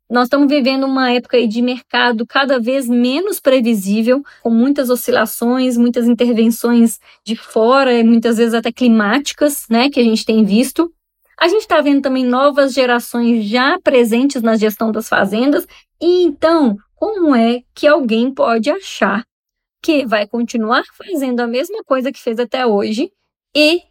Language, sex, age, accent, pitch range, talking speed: Portuguese, female, 10-29, Brazilian, 230-280 Hz, 155 wpm